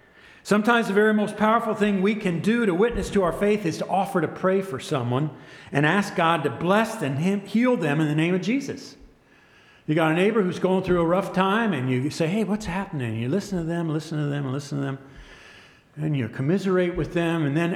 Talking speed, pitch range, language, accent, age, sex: 230 wpm, 130-200 Hz, English, American, 50-69, male